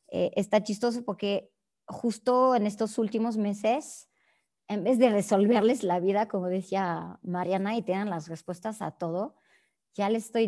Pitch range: 185-225 Hz